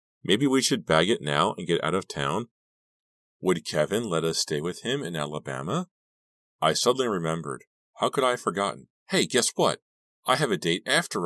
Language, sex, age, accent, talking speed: English, male, 40-59, American, 190 wpm